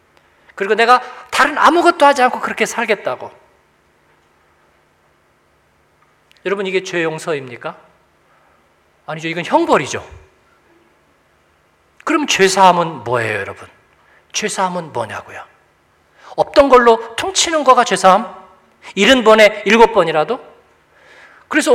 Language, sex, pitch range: Korean, male, 170-245 Hz